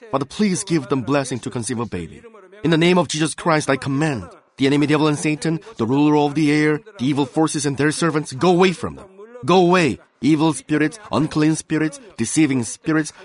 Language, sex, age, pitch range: Korean, male, 30-49, 135-165 Hz